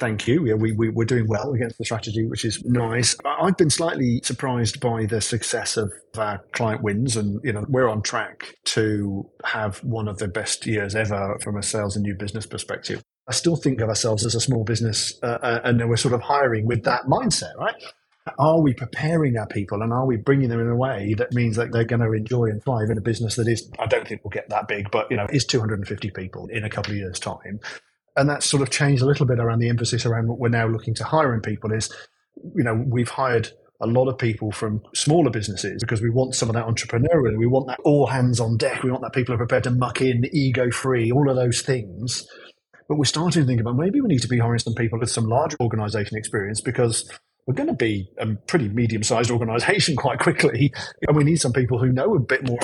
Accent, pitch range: British, 110-130 Hz